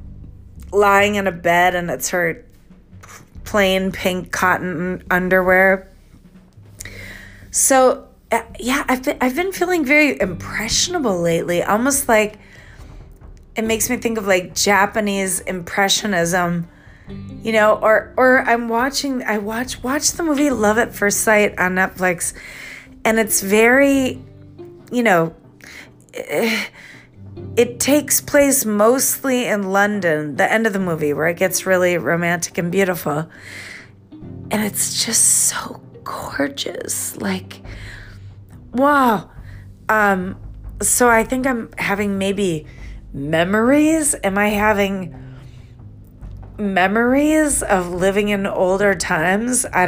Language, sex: English, female